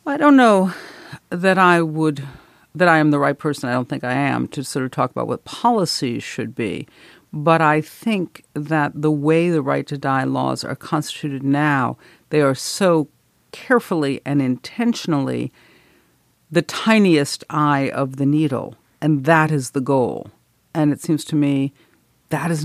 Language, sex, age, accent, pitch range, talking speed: English, female, 50-69, American, 140-165 Hz, 170 wpm